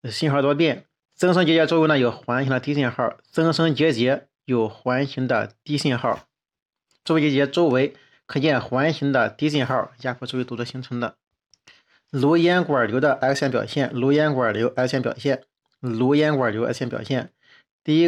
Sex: male